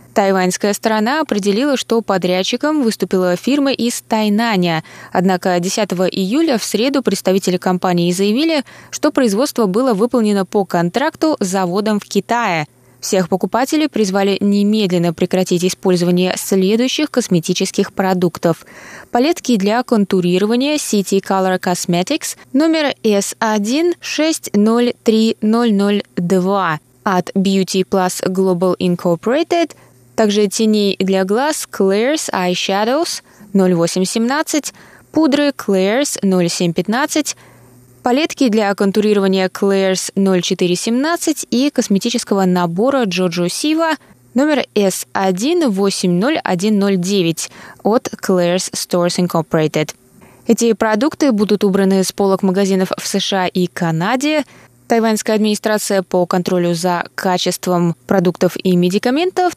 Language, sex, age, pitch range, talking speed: Russian, female, 20-39, 185-235 Hz, 100 wpm